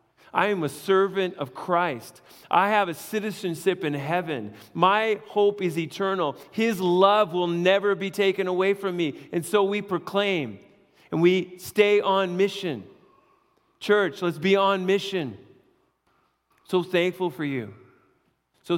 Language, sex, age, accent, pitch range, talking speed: English, male, 40-59, American, 150-190 Hz, 140 wpm